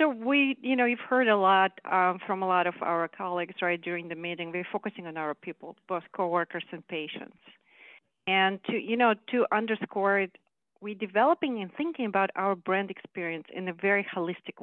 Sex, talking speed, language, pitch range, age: female, 195 wpm, English, 180-225 Hz, 40-59